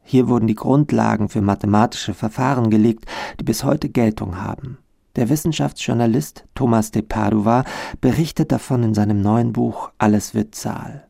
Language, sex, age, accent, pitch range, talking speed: German, male, 50-69, German, 105-125 Hz, 145 wpm